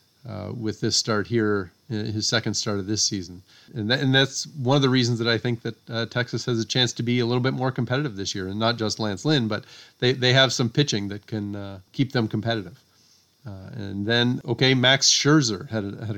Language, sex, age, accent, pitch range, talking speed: English, male, 40-59, American, 100-125 Hz, 235 wpm